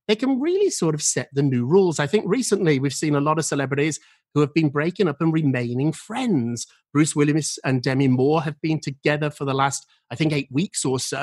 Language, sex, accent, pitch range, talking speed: English, male, British, 140-220 Hz, 230 wpm